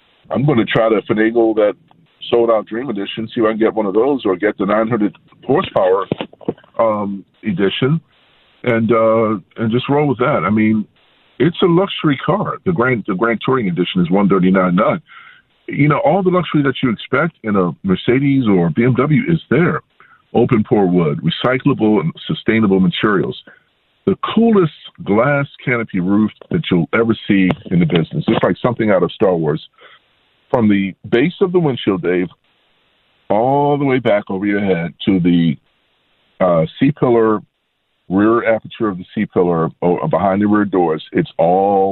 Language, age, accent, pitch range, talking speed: English, 50-69, American, 95-135 Hz, 165 wpm